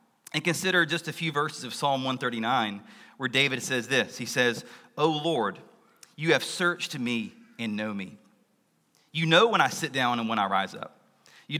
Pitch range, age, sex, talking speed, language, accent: 130-170 Hz, 30-49, male, 185 wpm, English, American